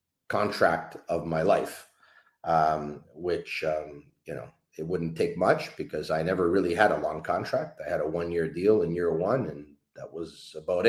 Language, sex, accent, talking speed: English, male, American, 185 wpm